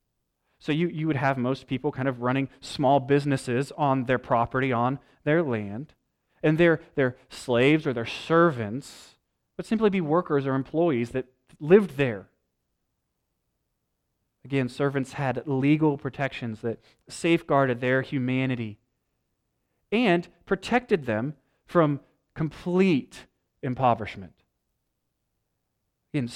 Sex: male